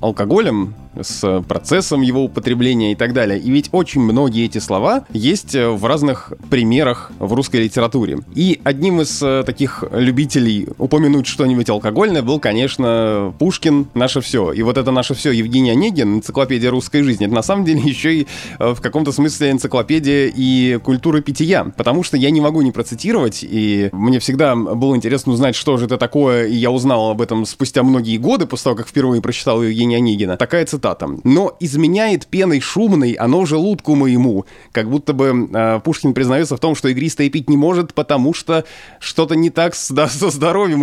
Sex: male